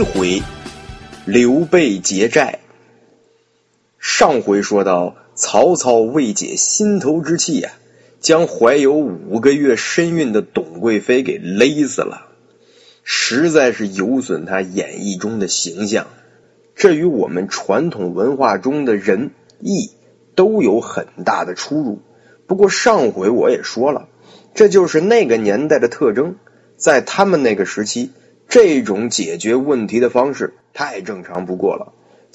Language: Chinese